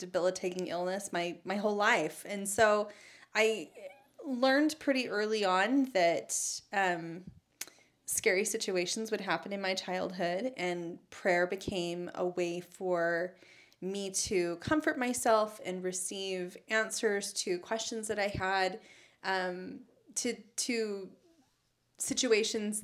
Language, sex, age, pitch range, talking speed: English, female, 20-39, 180-220 Hz, 115 wpm